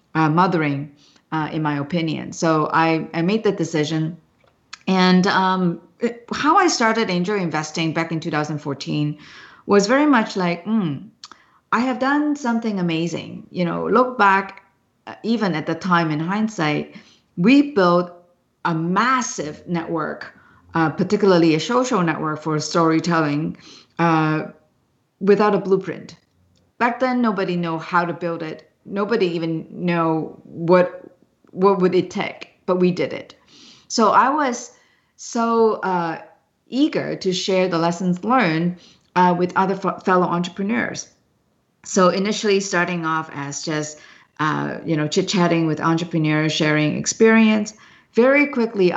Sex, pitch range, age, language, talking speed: female, 160-205 Hz, 40-59, English, 140 wpm